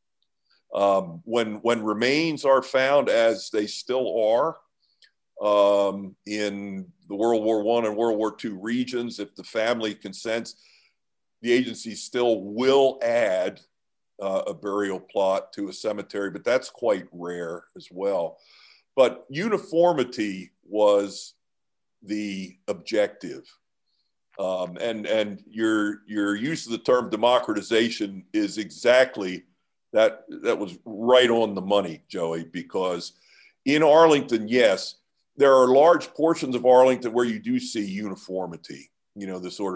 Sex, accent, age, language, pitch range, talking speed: male, American, 50-69, English, 100-125 Hz, 130 wpm